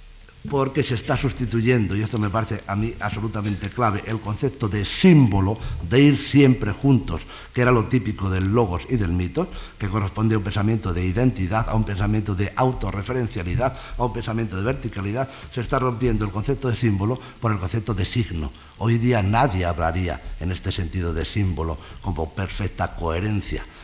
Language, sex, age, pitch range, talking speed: Spanish, male, 60-79, 95-125 Hz, 175 wpm